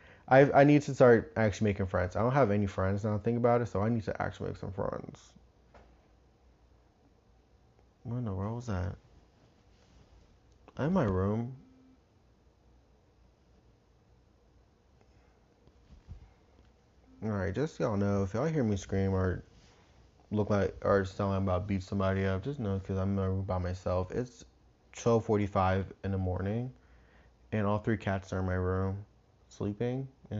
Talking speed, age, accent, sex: 160 wpm, 20-39, American, male